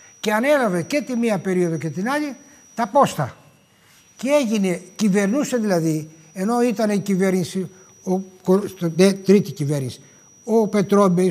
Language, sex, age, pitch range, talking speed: Greek, male, 60-79, 175-235 Hz, 125 wpm